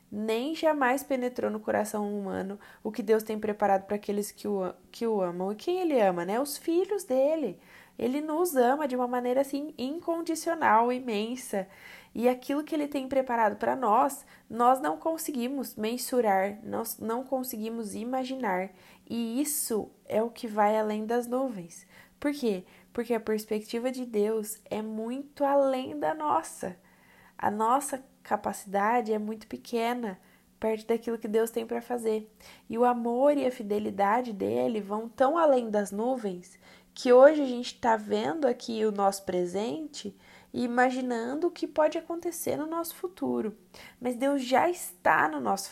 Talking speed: 160 wpm